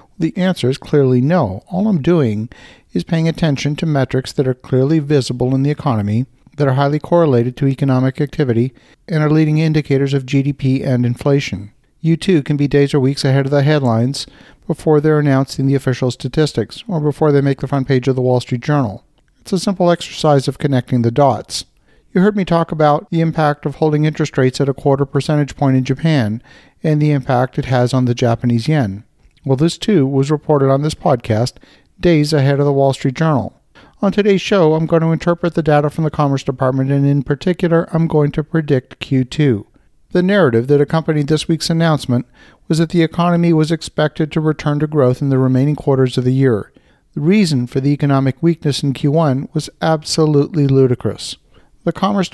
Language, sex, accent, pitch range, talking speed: English, male, American, 130-160 Hz, 195 wpm